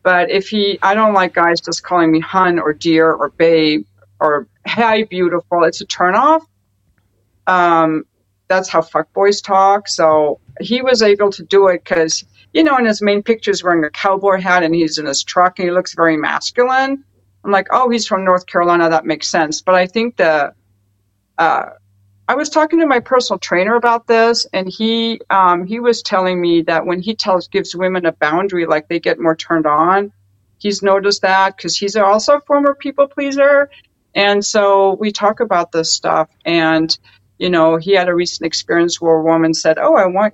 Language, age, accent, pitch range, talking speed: English, 50-69, American, 160-205 Hz, 200 wpm